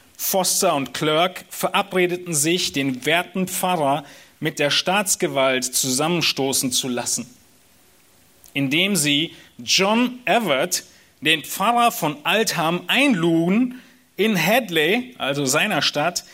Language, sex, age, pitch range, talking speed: German, male, 40-59, 145-210 Hz, 105 wpm